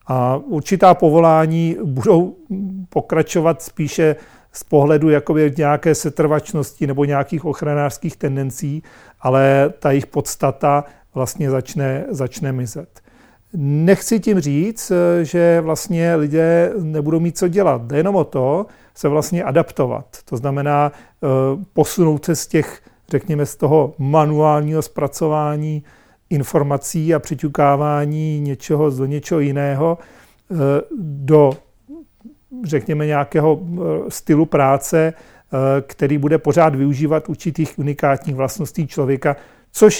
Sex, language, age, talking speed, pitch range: male, Czech, 40-59, 110 wpm, 140-160 Hz